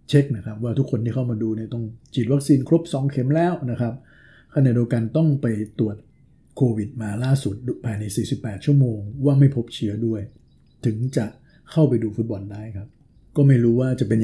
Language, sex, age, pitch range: Thai, male, 60-79, 105-130 Hz